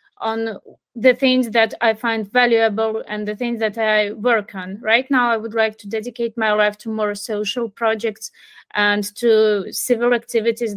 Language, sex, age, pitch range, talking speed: English, female, 20-39, 210-240 Hz, 175 wpm